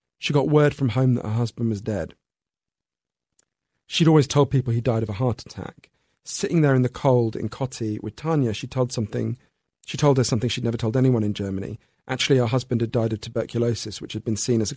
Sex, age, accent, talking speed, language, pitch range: male, 40-59, British, 225 wpm, English, 110-145 Hz